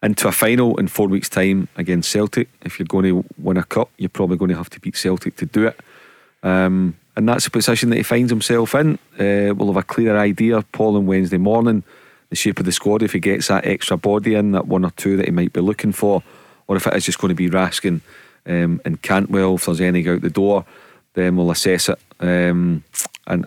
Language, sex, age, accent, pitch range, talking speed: English, male, 40-59, British, 90-105 Hz, 235 wpm